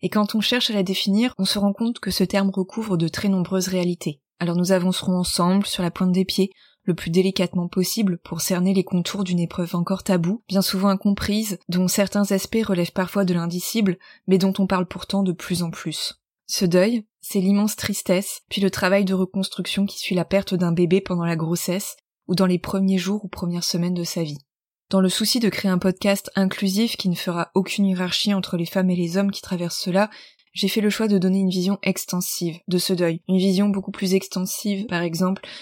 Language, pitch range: French, 180-200 Hz